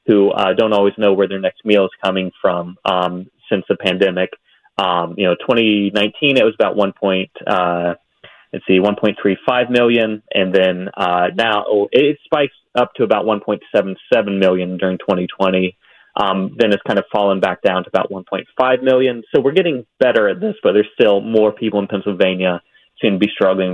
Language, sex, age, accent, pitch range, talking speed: English, male, 30-49, American, 95-110 Hz, 205 wpm